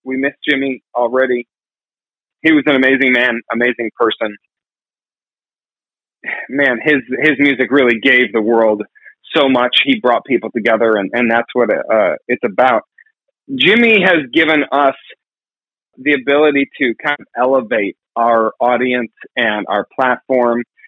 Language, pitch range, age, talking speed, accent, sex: English, 120-150 Hz, 30-49, 140 wpm, American, male